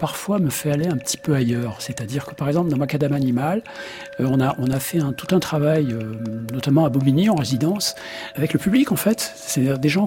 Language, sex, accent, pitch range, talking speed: French, male, French, 120-170 Hz, 230 wpm